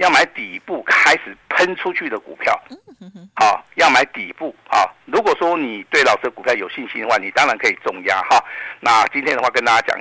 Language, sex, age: Chinese, male, 50-69